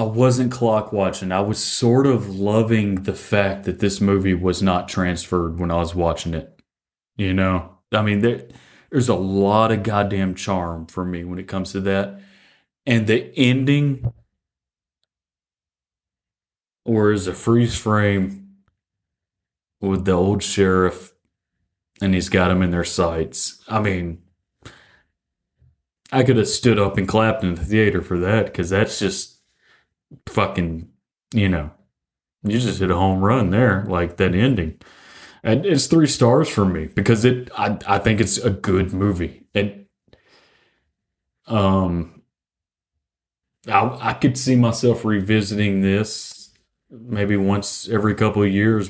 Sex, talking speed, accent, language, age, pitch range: male, 145 wpm, American, English, 30-49, 90-110 Hz